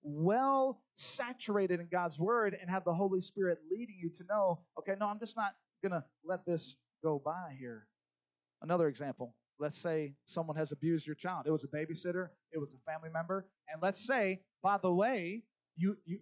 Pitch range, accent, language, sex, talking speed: 135-190 Hz, American, English, male, 185 wpm